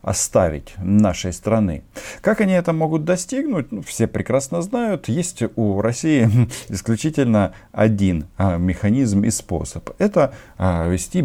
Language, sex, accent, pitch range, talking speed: Russian, male, native, 90-115 Hz, 125 wpm